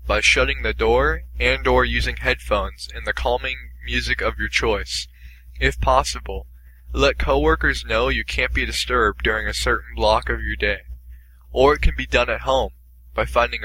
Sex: male